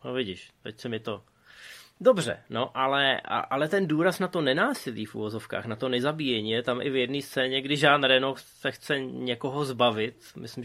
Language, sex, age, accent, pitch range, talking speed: Czech, male, 20-39, native, 115-135 Hz, 195 wpm